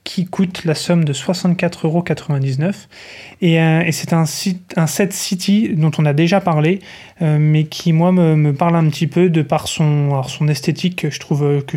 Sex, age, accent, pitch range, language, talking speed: male, 20-39, French, 150-170 Hz, French, 205 wpm